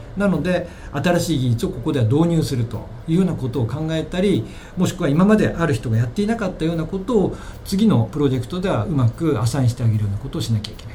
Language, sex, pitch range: Japanese, male, 115-185 Hz